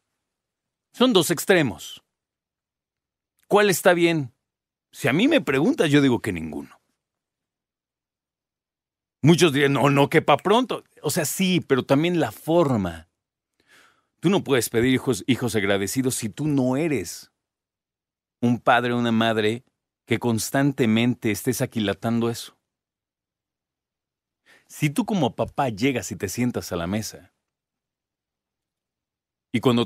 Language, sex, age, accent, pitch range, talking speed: Spanish, male, 40-59, Mexican, 110-145 Hz, 125 wpm